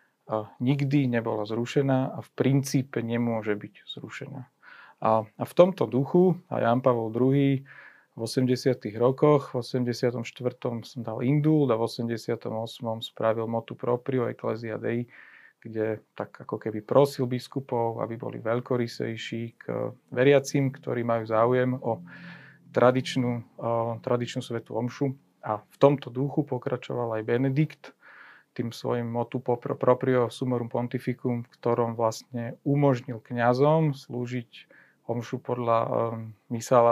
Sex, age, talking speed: male, 40-59, 125 wpm